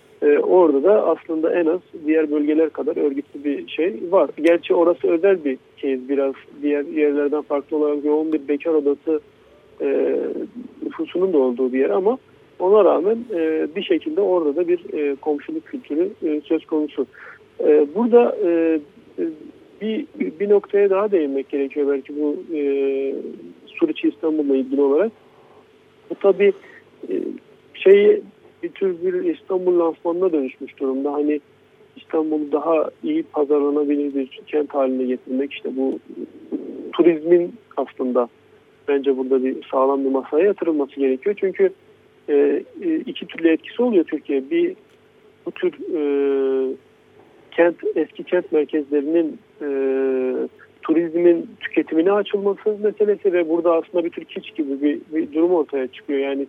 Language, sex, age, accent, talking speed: Turkish, male, 50-69, native, 140 wpm